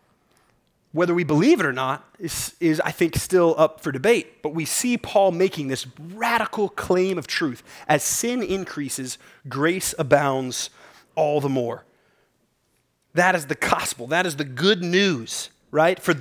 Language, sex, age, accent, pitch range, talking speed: English, male, 30-49, American, 140-200 Hz, 160 wpm